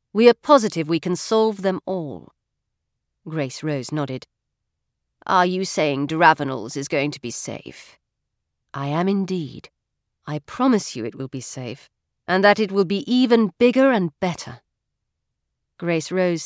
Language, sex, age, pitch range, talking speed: English, female, 40-59, 165-245 Hz, 150 wpm